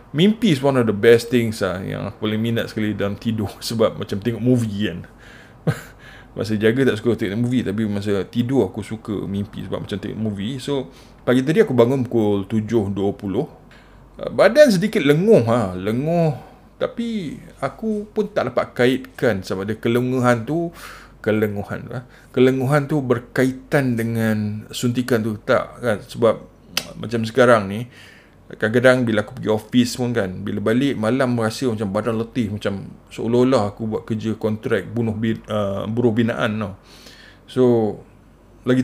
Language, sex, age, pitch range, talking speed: Malay, male, 20-39, 105-125 Hz, 155 wpm